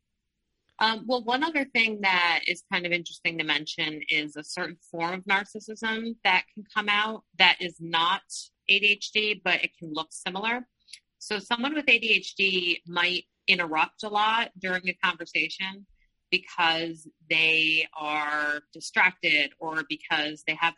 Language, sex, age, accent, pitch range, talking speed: English, female, 30-49, American, 160-200 Hz, 145 wpm